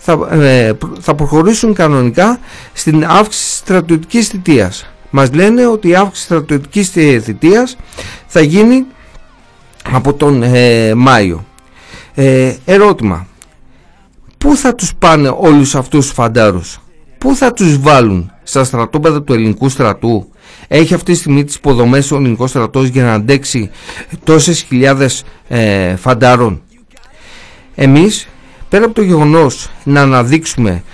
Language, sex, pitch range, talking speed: Greek, male, 120-165 Hz, 120 wpm